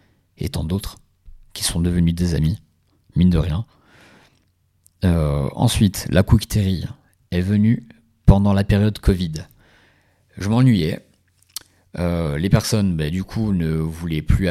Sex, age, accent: male, 50-69, French